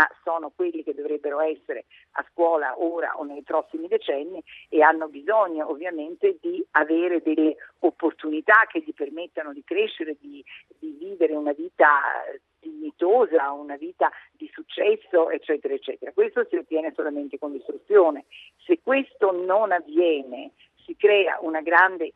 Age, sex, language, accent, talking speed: 50-69, female, Italian, native, 140 wpm